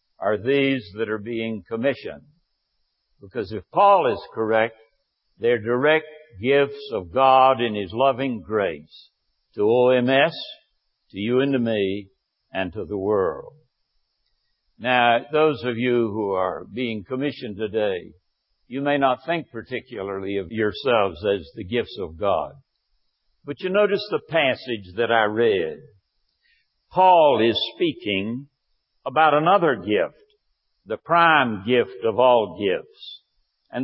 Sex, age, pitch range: male, 60-79, 115-155 Hz